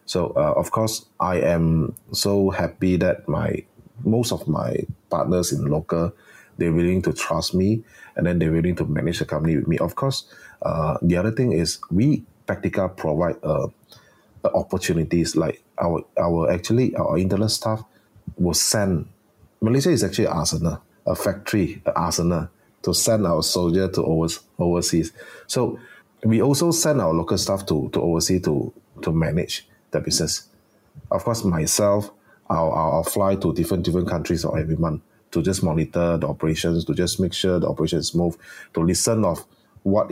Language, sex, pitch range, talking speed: English, male, 85-100 Hz, 160 wpm